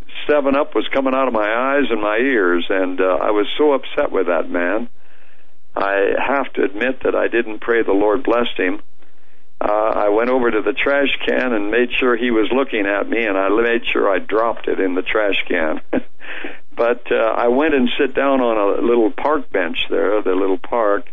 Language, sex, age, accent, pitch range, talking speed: English, male, 60-79, American, 105-135 Hz, 210 wpm